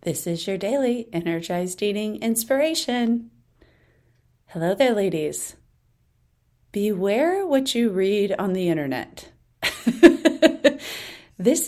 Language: English